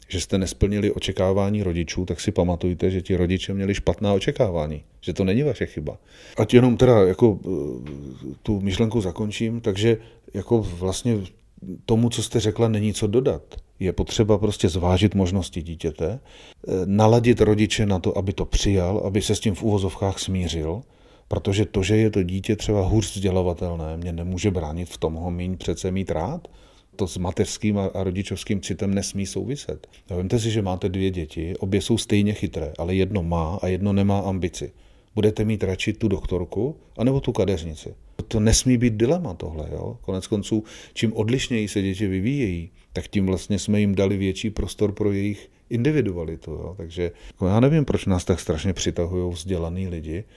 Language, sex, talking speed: Slovak, male, 170 wpm